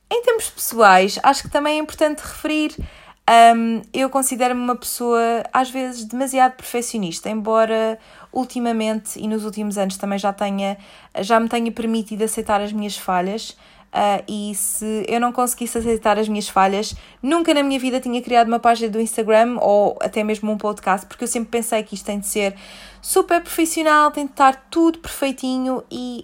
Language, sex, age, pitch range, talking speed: Portuguese, female, 20-39, 200-250 Hz, 170 wpm